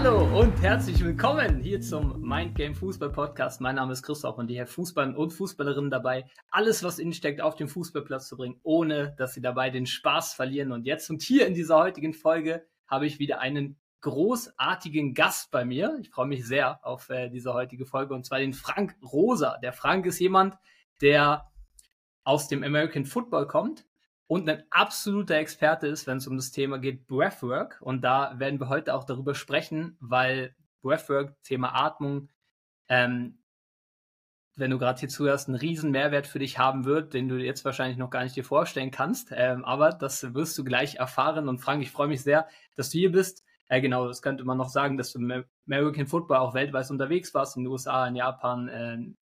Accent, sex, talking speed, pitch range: German, male, 195 wpm, 130-155 Hz